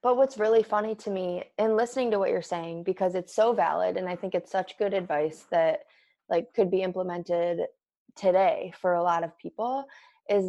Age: 20-39